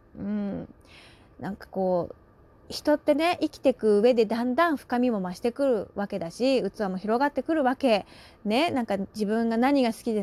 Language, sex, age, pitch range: Japanese, female, 30-49, 210-300 Hz